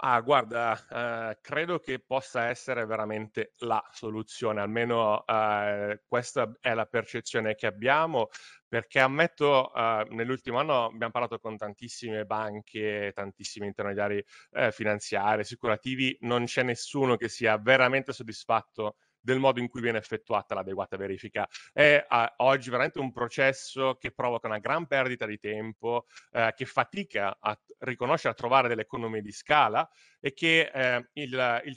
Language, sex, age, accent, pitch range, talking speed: Italian, male, 30-49, native, 115-145 Hz, 145 wpm